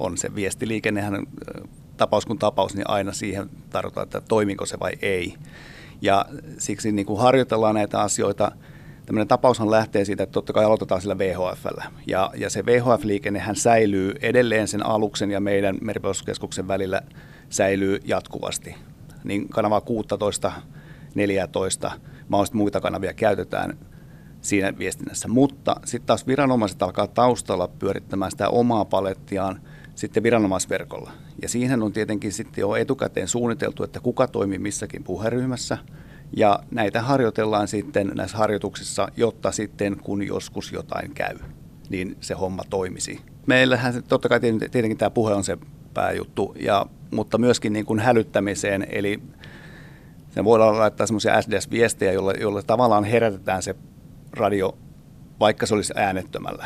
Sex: male